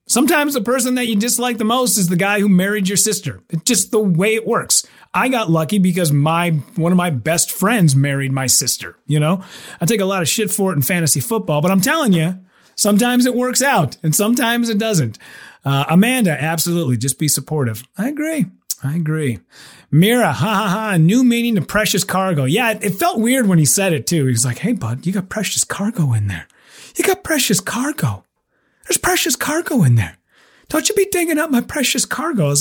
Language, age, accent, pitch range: English, 30-49, American, 155-240 Hz